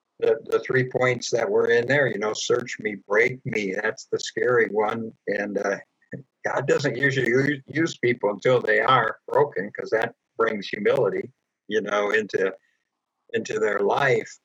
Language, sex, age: English, male, 60-79